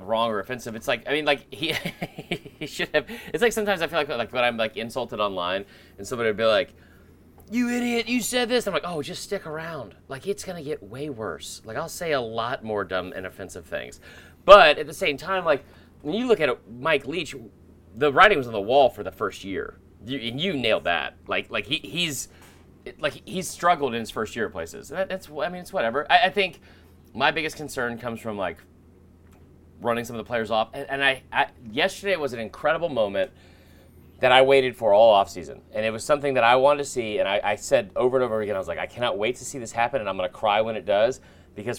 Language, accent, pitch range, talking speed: English, American, 95-155 Hz, 240 wpm